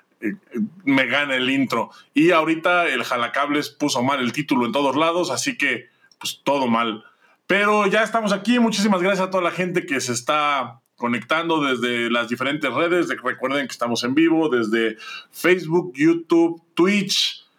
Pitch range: 135-190 Hz